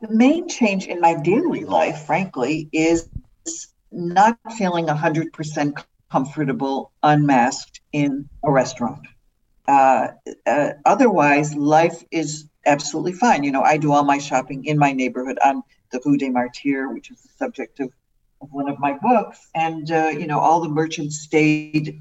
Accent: American